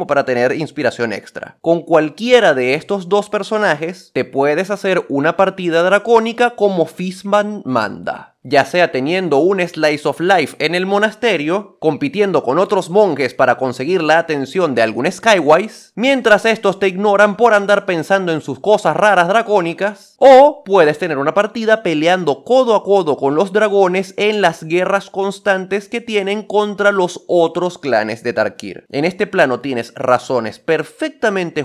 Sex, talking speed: male, 155 wpm